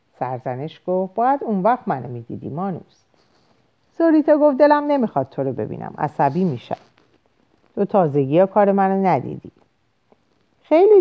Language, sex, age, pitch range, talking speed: Persian, female, 50-69, 150-255 Hz, 125 wpm